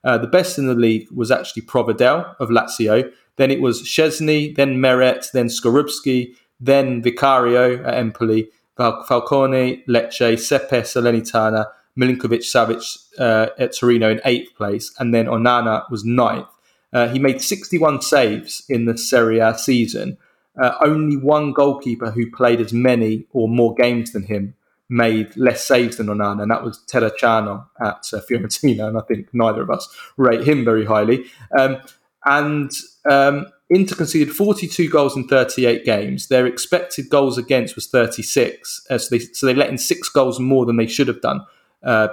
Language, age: English, 20-39